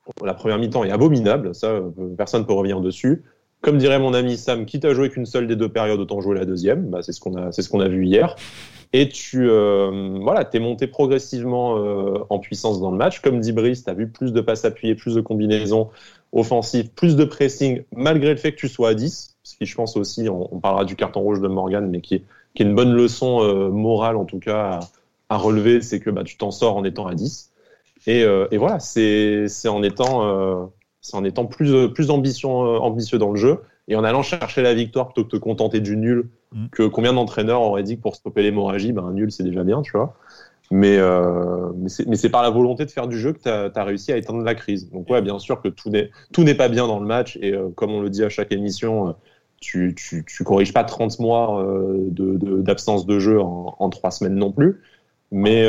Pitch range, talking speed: 100-120 Hz, 250 wpm